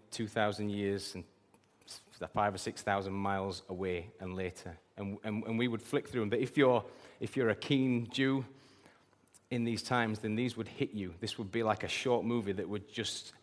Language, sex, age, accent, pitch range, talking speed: English, male, 30-49, British, 100-120 Hz, 205 wpm